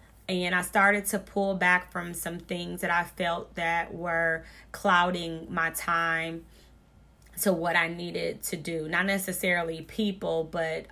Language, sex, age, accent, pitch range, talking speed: English, female, 20-39, American, 170-195 Hz, 150 wpm